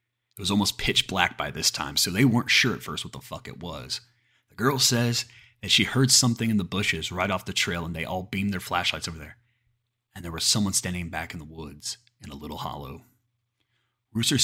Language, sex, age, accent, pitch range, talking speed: English, male, 30-49, American, 95-120 Hz, 230 wpm